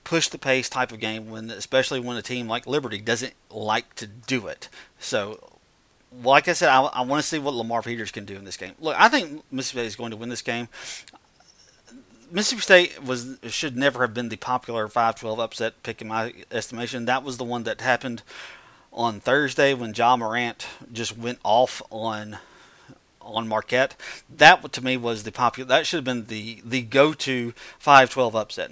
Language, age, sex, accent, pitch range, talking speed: English, 40-59, male, American, 115-145 Hz, 190 wpm